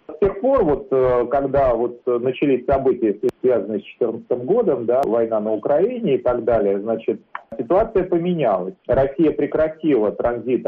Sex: male